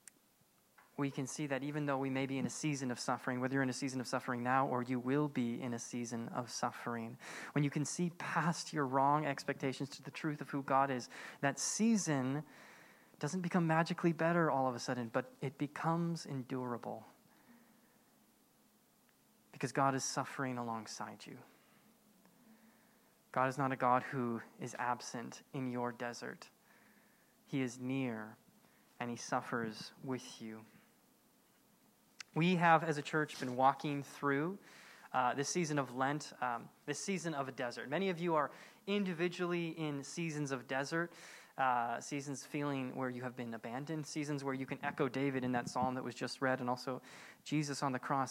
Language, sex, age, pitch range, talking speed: English, male, 20-39, 130-170 Hz, 175 wpm